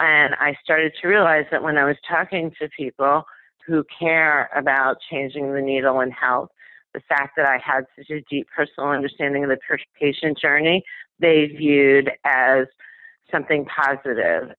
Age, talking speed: 40-59, 160 wpm